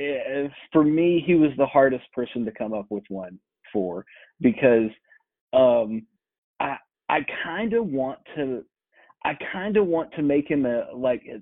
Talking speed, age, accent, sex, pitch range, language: 165 wpm, 30-49, American, male, 125-160 Hz, English